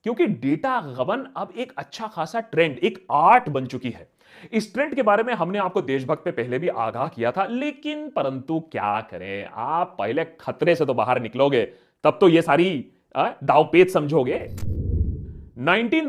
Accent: native